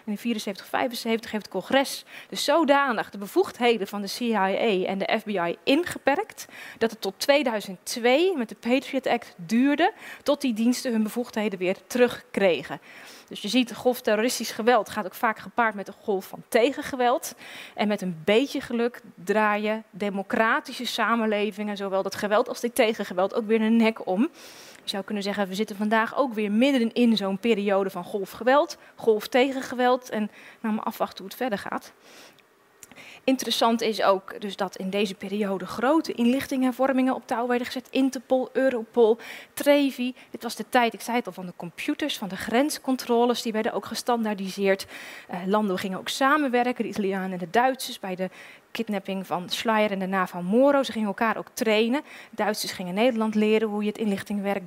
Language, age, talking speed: Dutch, 20-39, 180 wpm